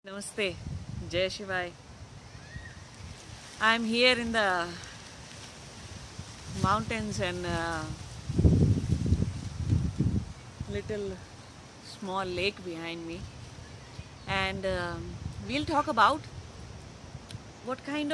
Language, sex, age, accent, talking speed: English, female, 30-49, Indian, 75 wpm